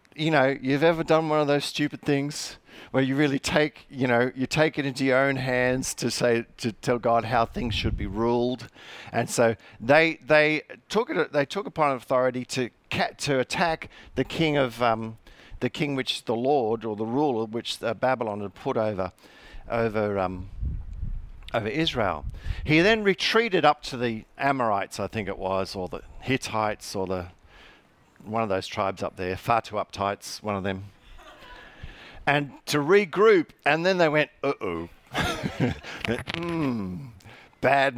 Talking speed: 165 wpm